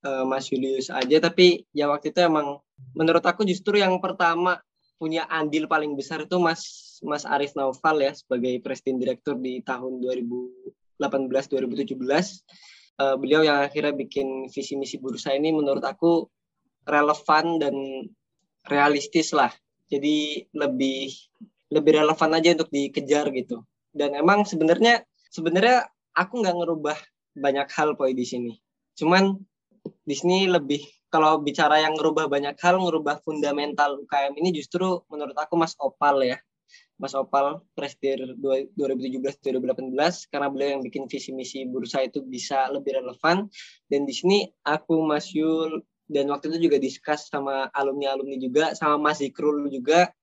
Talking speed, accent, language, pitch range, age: 135 wpm, native, Indonesian, 135-160 Hz, 20-39